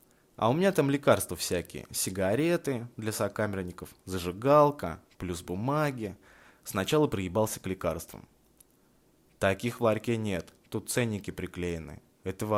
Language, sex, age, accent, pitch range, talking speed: Russian, male, 20-39, native, 95-135 Hz, 115 wpm